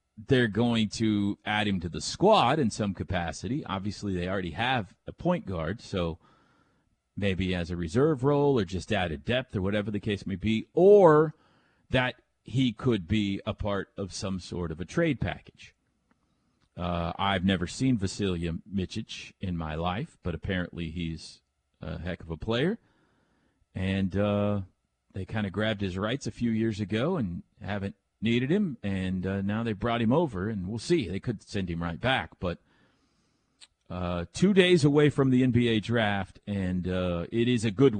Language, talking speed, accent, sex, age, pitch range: English, 175 wpm, American, male, 40-59, 95-125 Hz